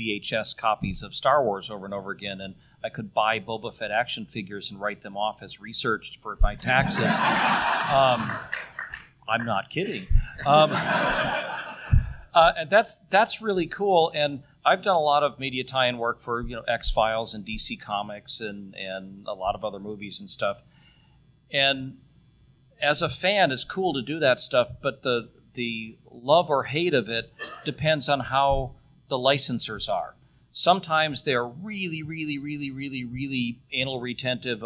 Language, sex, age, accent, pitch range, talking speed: English, male, 40-59, American, 115-150 Hz, 165 wpm